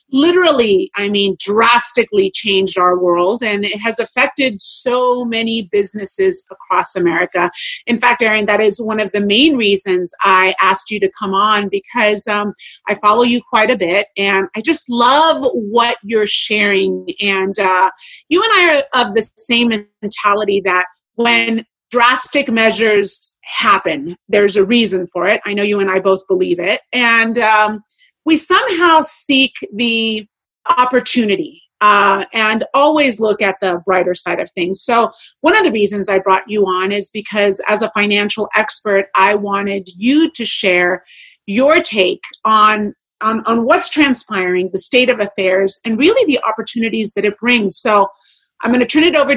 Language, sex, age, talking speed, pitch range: English, female, 30-49, 165 wpm, 195-245 Hz